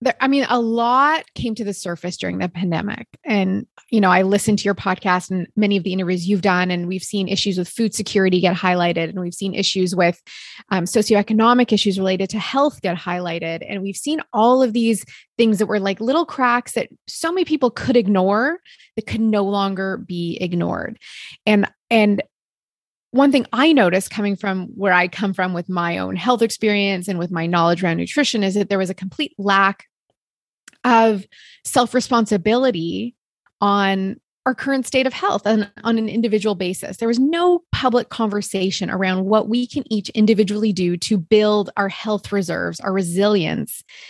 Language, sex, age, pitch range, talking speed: English, female, 20-39, 190-240 Hz, 185 wpm